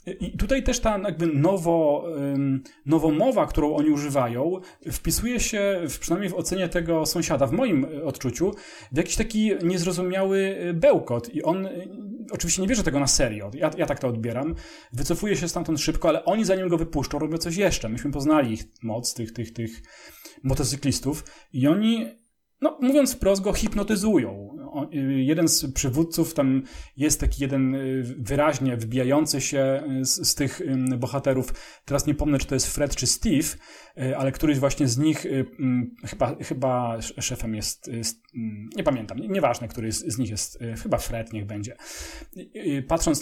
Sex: male